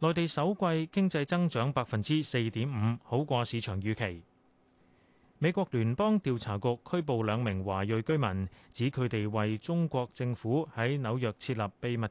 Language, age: Chinese, 30-49